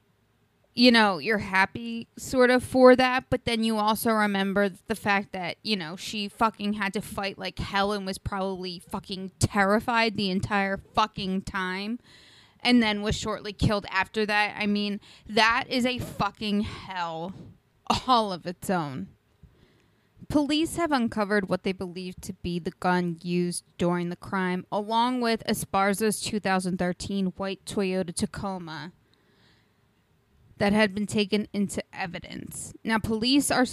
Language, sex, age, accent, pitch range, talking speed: English, female, 20-39, American, 185-220 Hz, 145 wpm